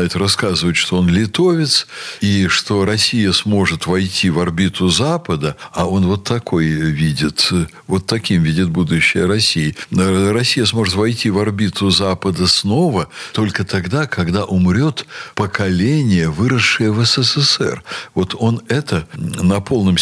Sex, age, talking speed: male, 60-79, 125 wpm